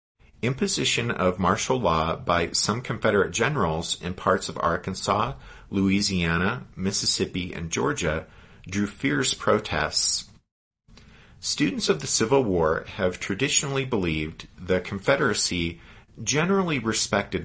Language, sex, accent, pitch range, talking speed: English, male, American, 90-115 Hz, 105 wpm